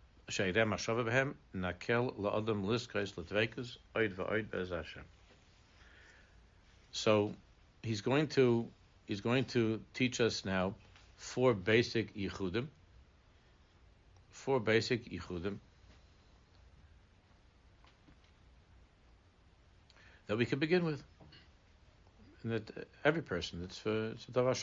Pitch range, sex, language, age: 90-110 Hz, male, English, 60-79